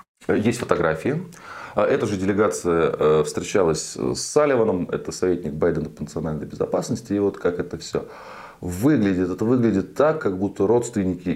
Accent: native